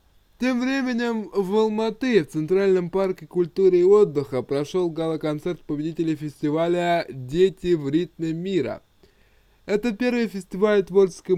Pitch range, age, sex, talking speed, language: 150-190 Hz, 20-39, male, 115 wpm, Russian